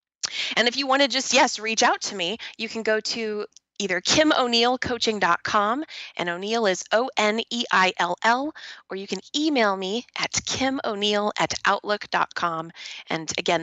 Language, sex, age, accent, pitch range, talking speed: English, female, 20-39, American, 200-270 Hz, 150 wpm